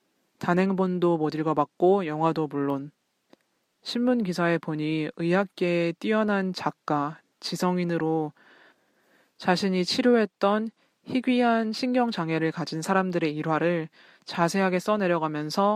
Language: Korean